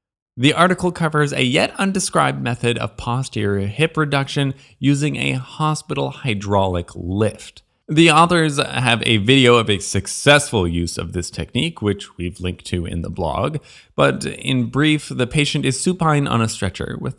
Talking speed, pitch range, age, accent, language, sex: 160 wpm, 100-145 Hz, 20-39, American, English, male